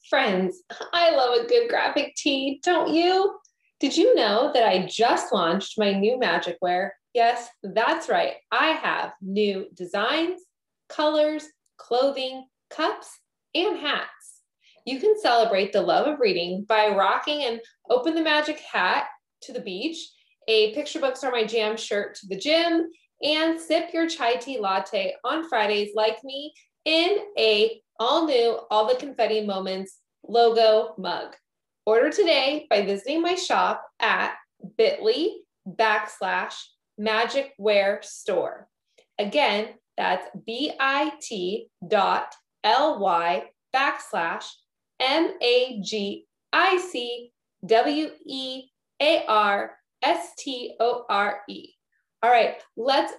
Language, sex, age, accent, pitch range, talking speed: English, female, 20-39, American, 215-320 Hz, 110 wpm